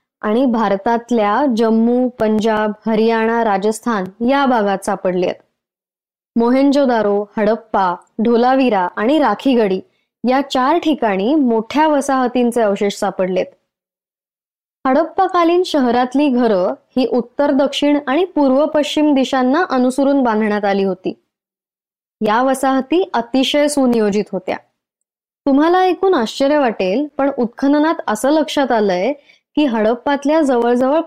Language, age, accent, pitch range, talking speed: Marathi, 20-39, native, 225-285 Hz, 100 wpm